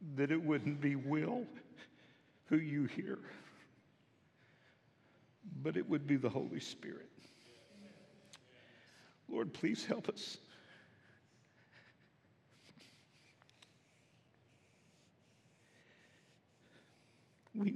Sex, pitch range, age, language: male, 125-155 Hz, 60-79, English